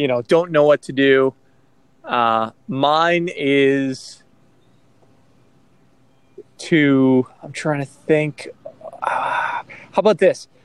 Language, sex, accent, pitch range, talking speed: English, male, American, 125-145 Hz, 105 wpm